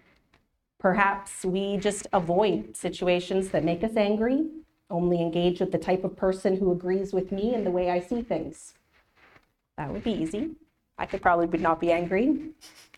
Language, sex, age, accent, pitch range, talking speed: English, female, 30-49, American, 170-230 Hz, 165 wpm